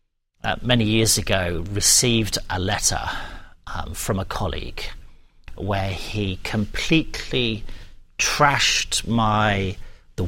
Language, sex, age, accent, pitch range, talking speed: English, male, 40-59, British, 95-120 Hz, 100 wpm